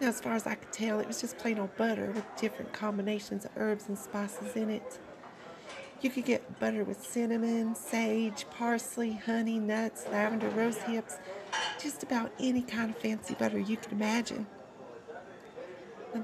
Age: 40-59